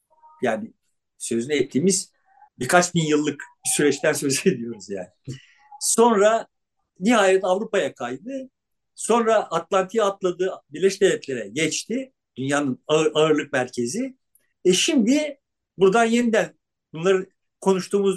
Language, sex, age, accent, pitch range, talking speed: Turkish, male, 60-79, native, 165-225 Hz, 100 wpm